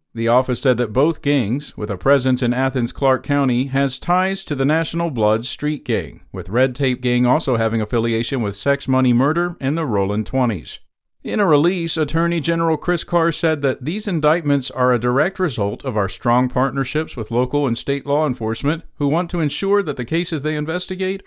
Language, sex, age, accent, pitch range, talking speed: English, male, 50-69, American, 115-160 Hz, 195 wpm